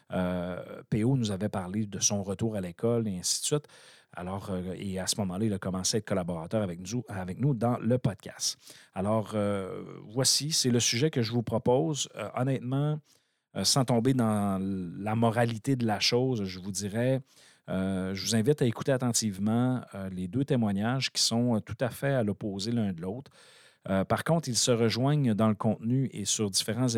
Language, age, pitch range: French, 40-59, 100-125 Hz